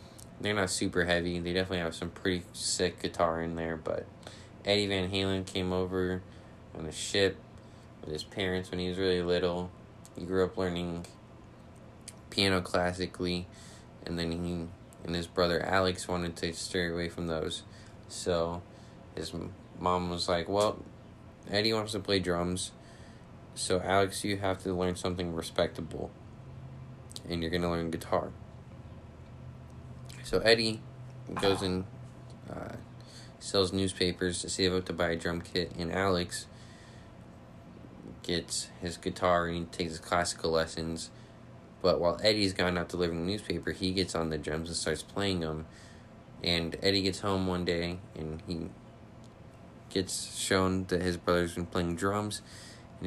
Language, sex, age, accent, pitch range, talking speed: English, male, 20-39, American, 85-100 Hz, 150 wpm